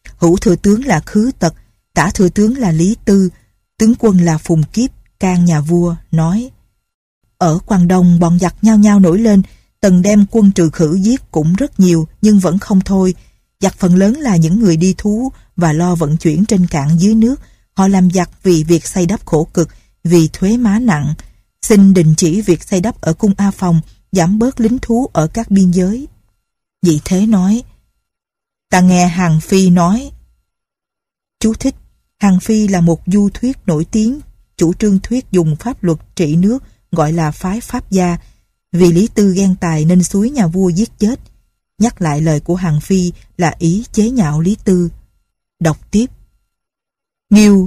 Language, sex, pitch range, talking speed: Vietnamese, female, 170-215 Hz, 185 wpm